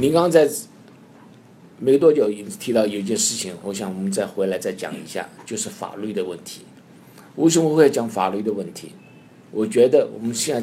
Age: 50-69